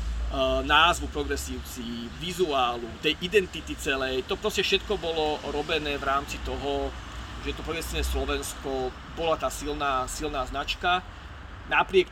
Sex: male